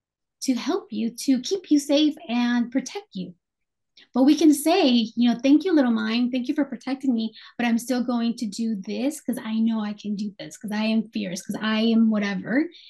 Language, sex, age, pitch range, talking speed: English, female, 20-39, 225-270 Hz, 220 wpm